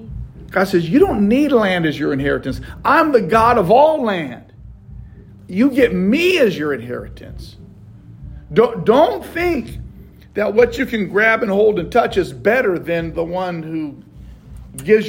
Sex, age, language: male, 50-69, English